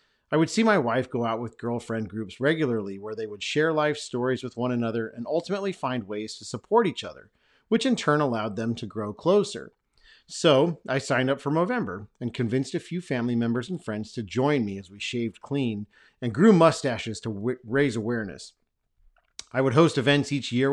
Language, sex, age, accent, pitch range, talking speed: English, male, 40-59, American, 115-150 Hz, 205 wpm